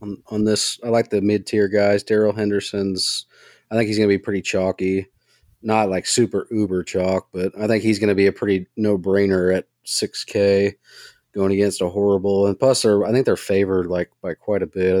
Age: 30-49